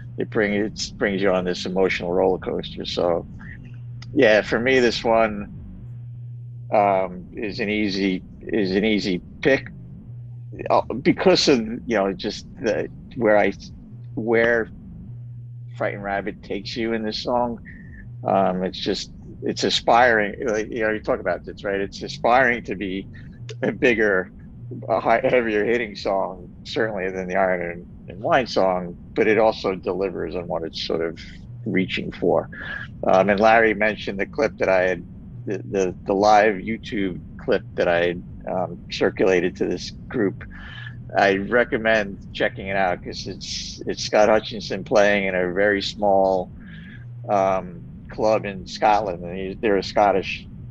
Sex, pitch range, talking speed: male, 95-115 Hz, 150 wpm